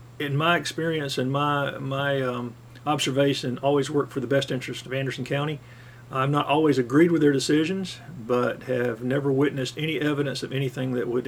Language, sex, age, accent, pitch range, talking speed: English, male, 50-69, American, 125-145 Hz, 180 wpm